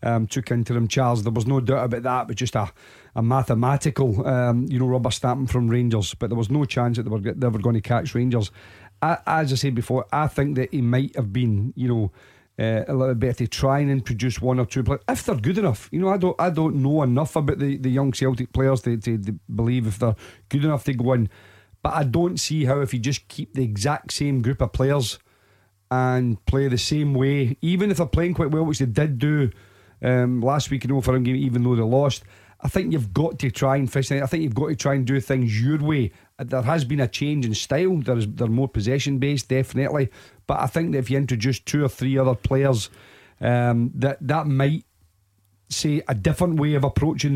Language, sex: English, male